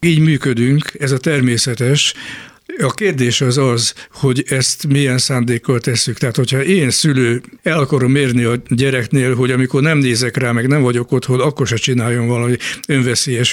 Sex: male